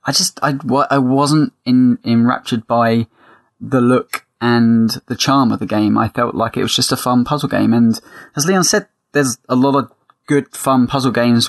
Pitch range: 120-140 Hz